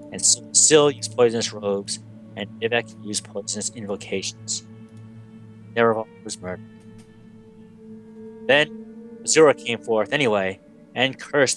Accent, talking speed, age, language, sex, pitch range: American, 105 wpm, 30-49, English, male, 110-160 Hz